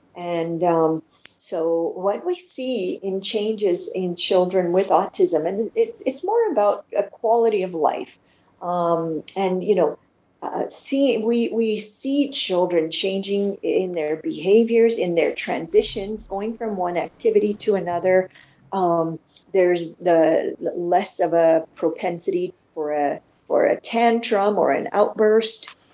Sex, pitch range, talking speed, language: female, 170-215 Hz, 135 wpm, English